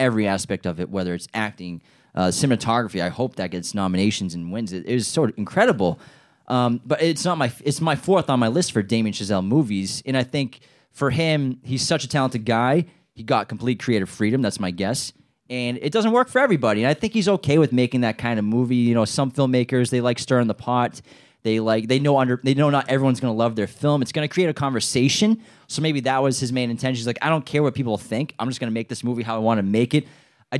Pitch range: 110-140 Hz